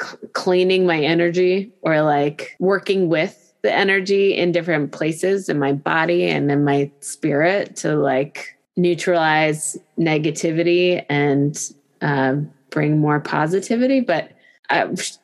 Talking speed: 120 wpm